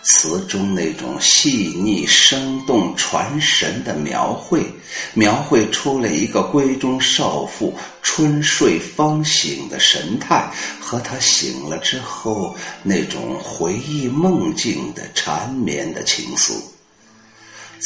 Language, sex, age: Chinese, male, 50-69